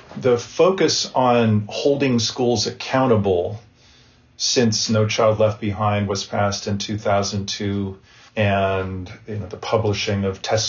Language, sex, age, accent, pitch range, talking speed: English, male, 40-59, American, 100-120 Hz, 125 wpm